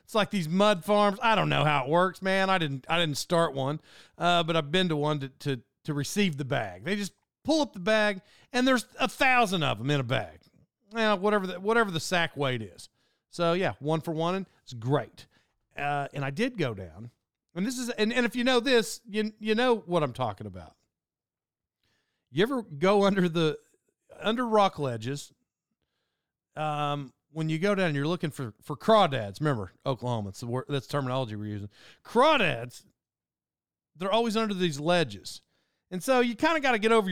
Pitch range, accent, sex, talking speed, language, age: 135-195 Hz, American, male, 205 wpm, English, 40-59